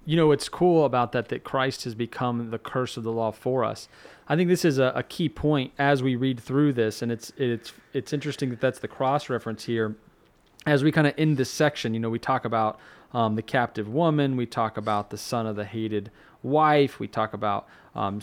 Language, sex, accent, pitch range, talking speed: English, male, American, 120-155 Hz, 230 wpm